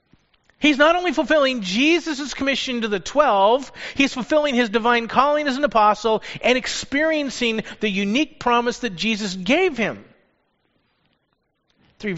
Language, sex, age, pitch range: English, male, 40-59, 175-245 Hz